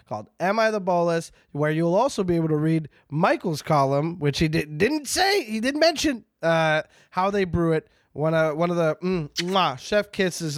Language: English